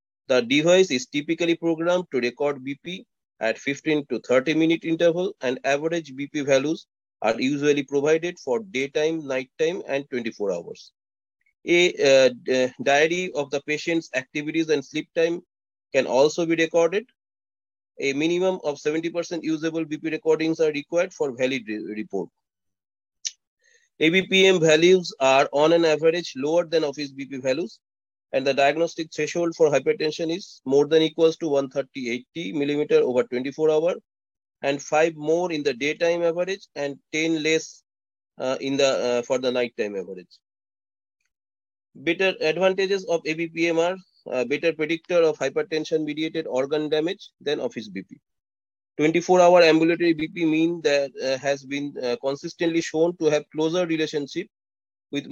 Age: 30-49